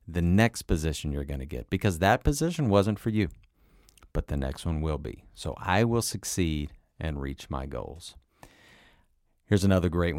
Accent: American